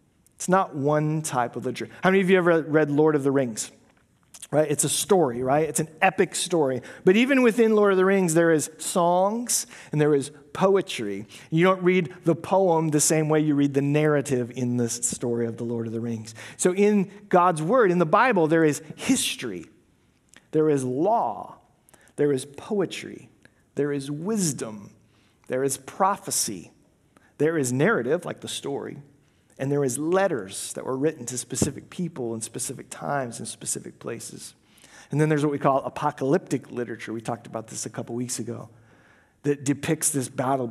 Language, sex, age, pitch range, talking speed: English, male, 40-59, 125-170 Hz, 185 wpm